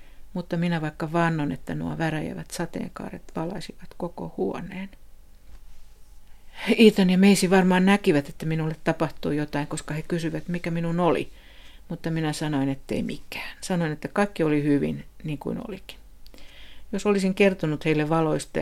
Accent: native